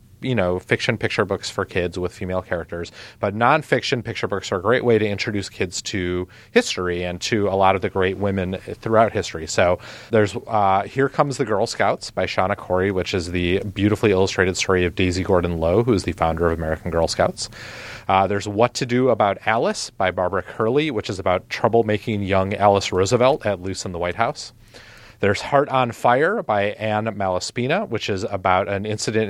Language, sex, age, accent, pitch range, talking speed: English, male, 30-49, American, 95-115 Hz, 195 wpm